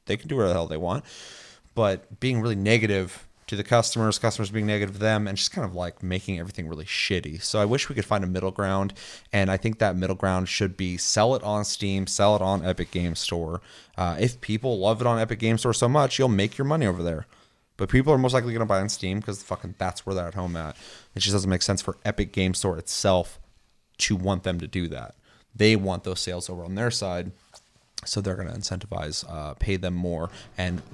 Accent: American